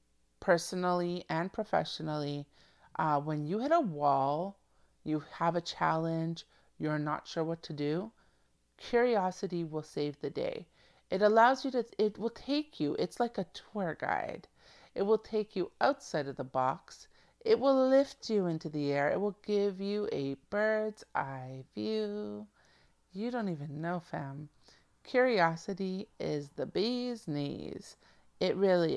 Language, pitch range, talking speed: English, 150-220 Hz, 150 wpm